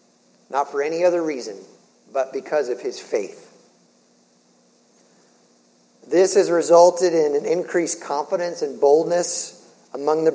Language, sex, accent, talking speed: English, male, American, 120 wpm